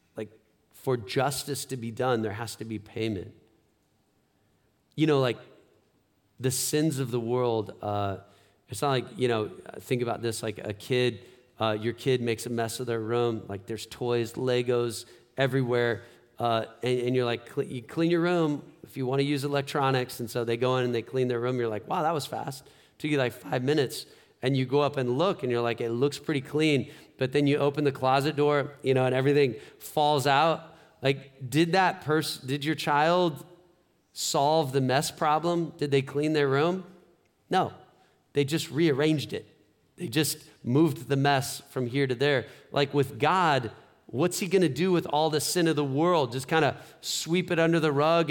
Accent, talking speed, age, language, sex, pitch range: American, 200 wpm, 40-59, English, male, 120-155 Hz